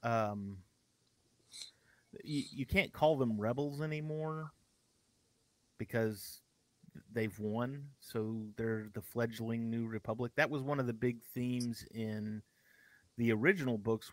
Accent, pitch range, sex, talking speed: American, 105-120 Hz, male, 120 wpm